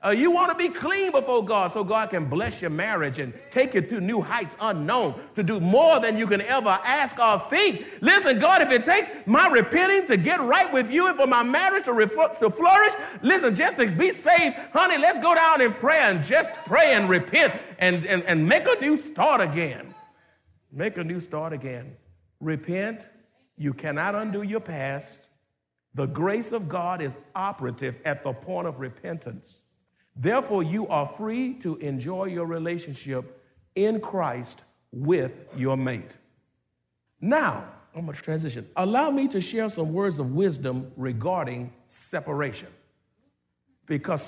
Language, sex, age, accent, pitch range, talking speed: English, male, 50-69, American, 145-240 Hz, 170 wpm